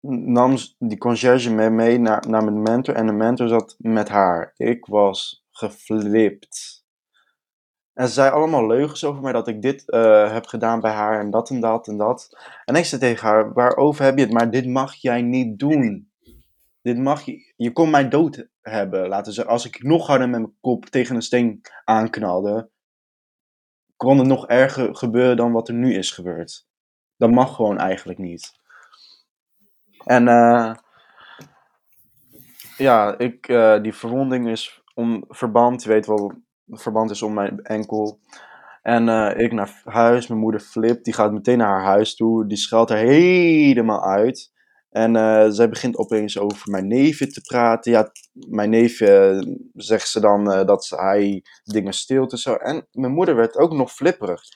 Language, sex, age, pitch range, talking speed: Dutch, male, 20-39, 110-130 Hz, 175 wpm